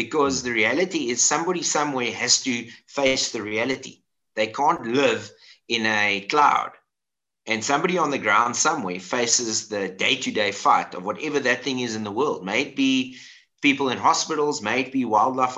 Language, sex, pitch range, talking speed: English, male, 100-140 Hz, 165 wpm